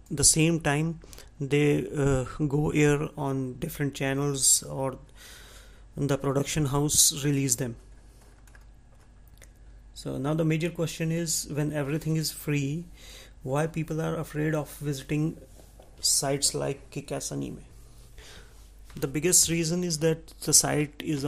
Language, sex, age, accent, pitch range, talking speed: English, male, 30-49, Indian, 135-155 Hz, 125 wpm